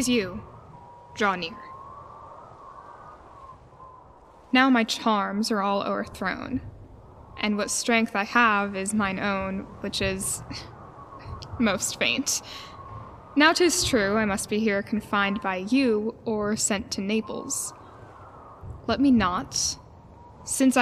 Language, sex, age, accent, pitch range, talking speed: English, female, 10-29, American, 200-235 Hz, 110 wpm